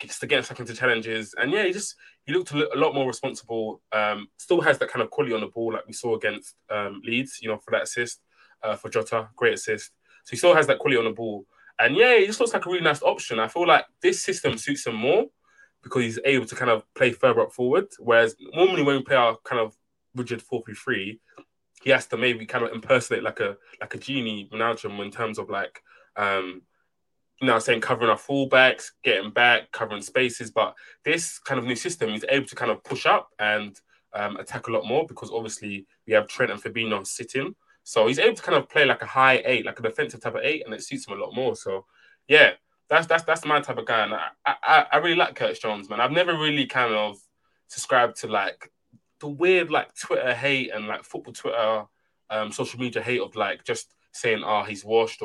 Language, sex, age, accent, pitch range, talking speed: English, male, 20-39, British, 110-155 Hz, 230 wpm